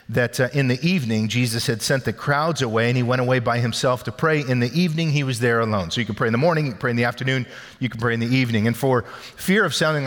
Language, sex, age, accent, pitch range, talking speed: English, male, 40-59, American, 115-145 Hz, 290 wpm